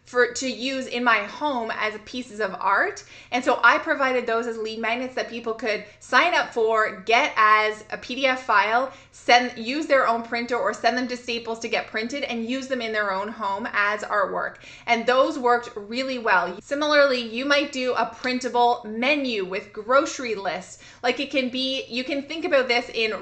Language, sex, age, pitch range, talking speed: English, female, 20-39, 215-265 Hz, 195 wpm